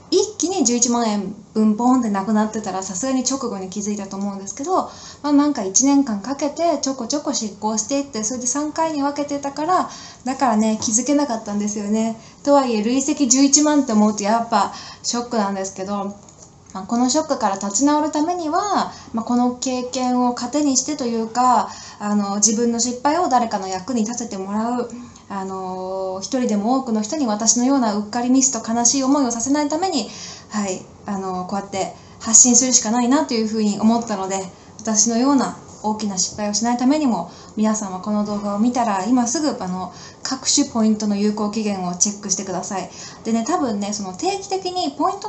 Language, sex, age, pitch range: Japanese, female, 20-39, 210-280 Hz